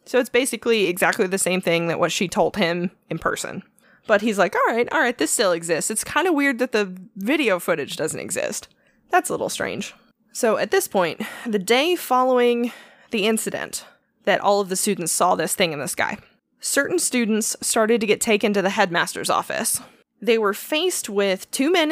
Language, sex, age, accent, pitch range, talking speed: English, female, 20-39, American, 195-240 Hz, 205 wpm